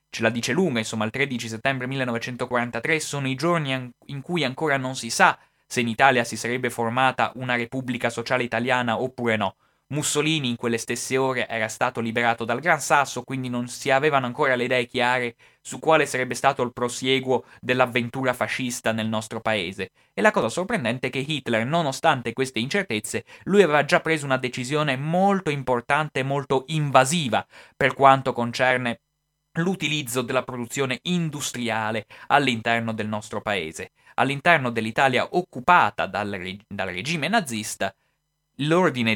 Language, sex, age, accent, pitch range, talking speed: Italian, male, 20-39, native, 115-150 Hz, 155 wpm